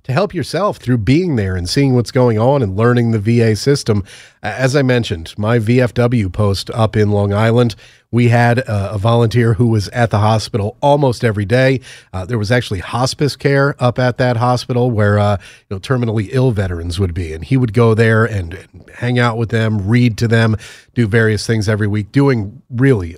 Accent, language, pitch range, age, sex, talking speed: American, English, 110-140 Hz, 30-49, male, 195 wpm